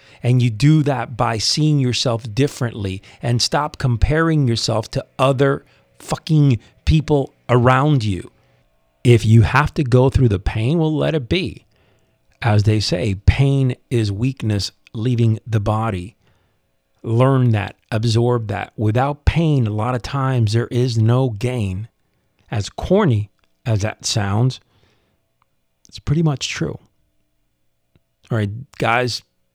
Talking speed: 130 wpm